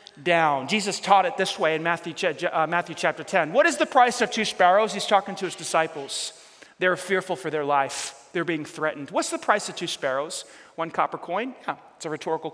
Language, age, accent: English, 30-49, American